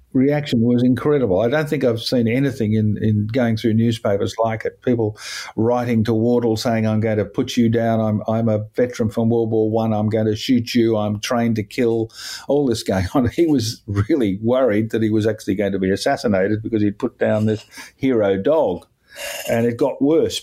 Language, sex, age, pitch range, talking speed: English, male, 50-69, 105-120 Hz, 210 wpm